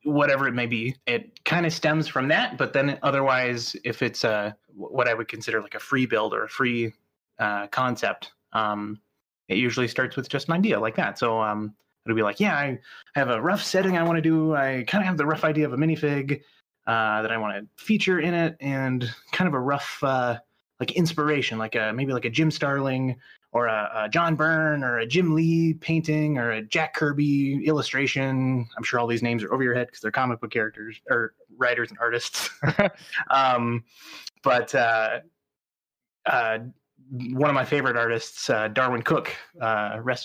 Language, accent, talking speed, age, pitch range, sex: English, American, 200 wpm, 20-39, 115-150 Hz, male